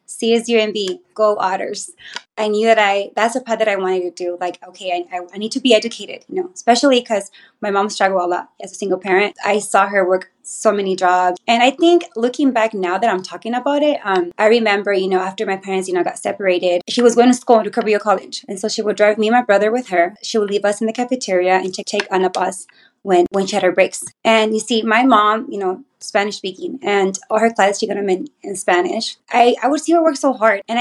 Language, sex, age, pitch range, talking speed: English, female, 20-39, 190-230 Hz, 260 wpm